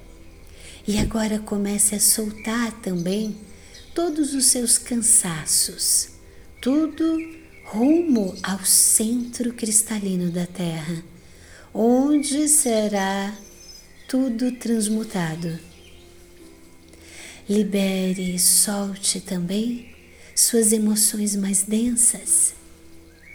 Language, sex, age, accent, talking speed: Portuguese, female, 50-69, Brazilian, 75 wpm